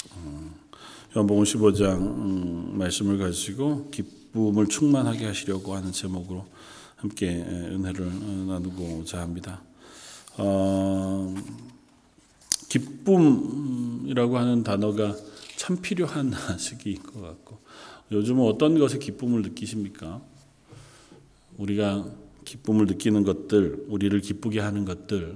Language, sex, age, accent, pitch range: Korean, male, 40-59, native, 95-115 Hz